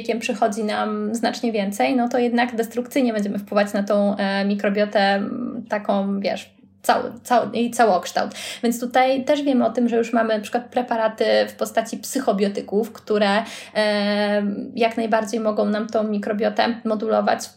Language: Polish